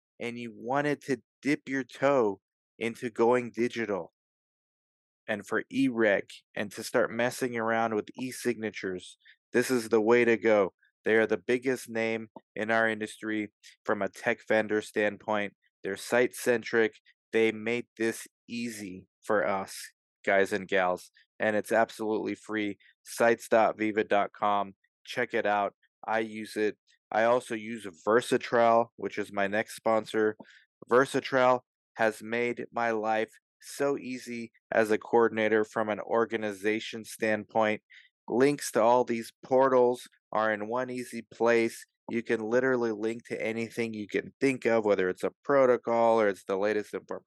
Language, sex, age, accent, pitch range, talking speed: English, male, 20-39, American, 110-125 Hz, 145 wpm